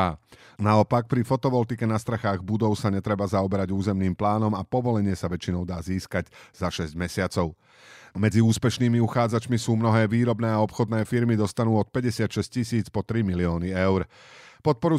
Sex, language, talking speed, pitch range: male, Slovak, 150 wpm, 95-120 Hz